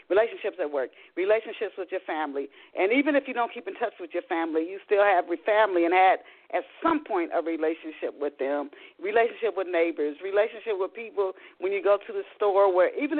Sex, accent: female, American